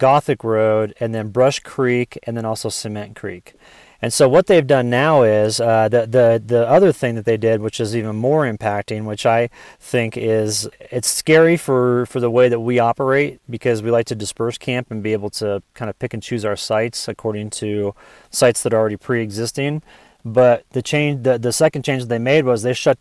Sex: male